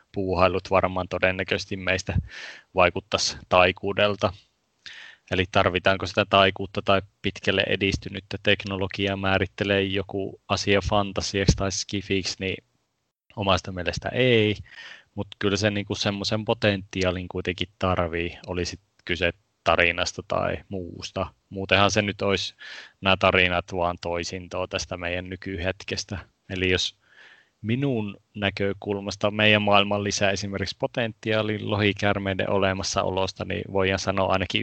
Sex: male